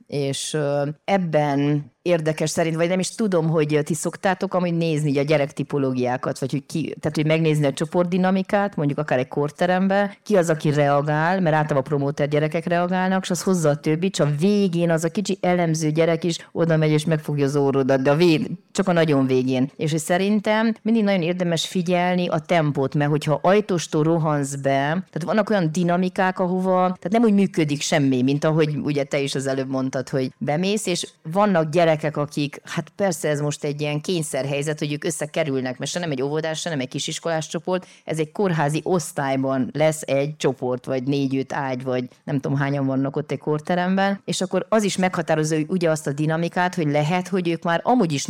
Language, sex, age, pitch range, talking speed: Hungarian, female, 30-49, 145-180 Hz, 195 wpm